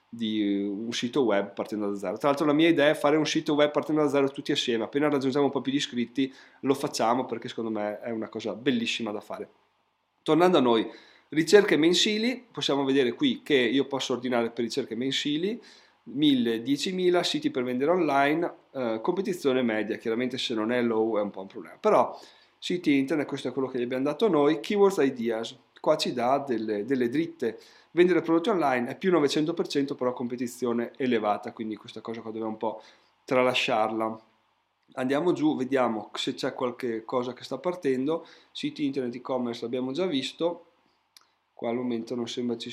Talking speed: 190 wpm